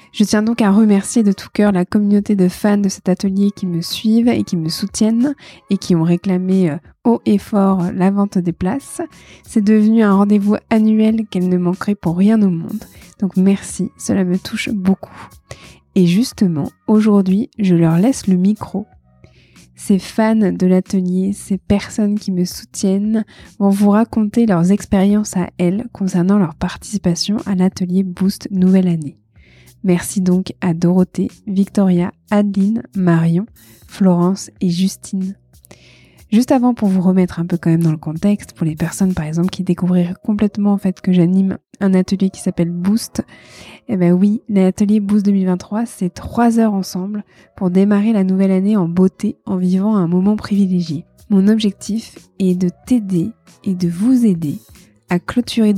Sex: female